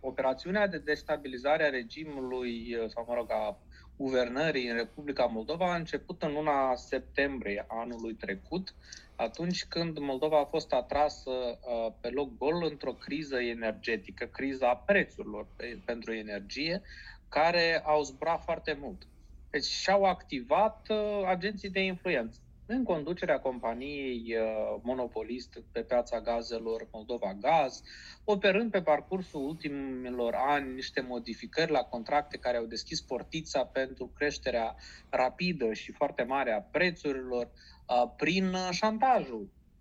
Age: 20-39